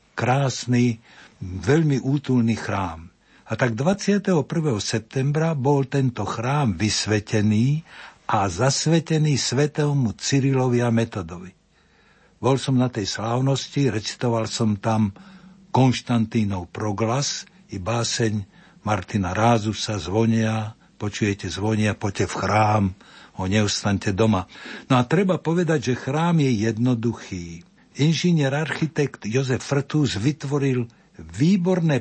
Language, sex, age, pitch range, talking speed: Slovak, male, 60-79, 110-145 Hz, 105 wpm